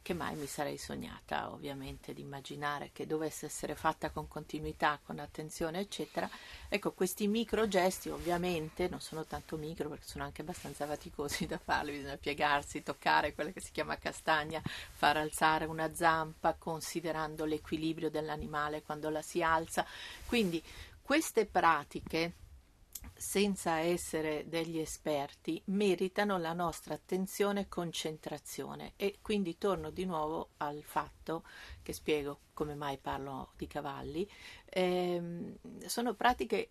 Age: 50-69